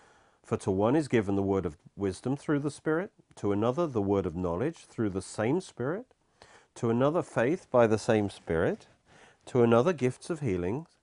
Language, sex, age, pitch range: English, male, 40-59, 105-165 Hz